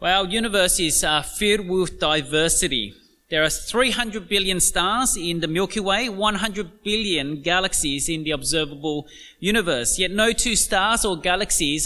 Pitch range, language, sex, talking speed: 175-225 Hz, English, male, 150 wpm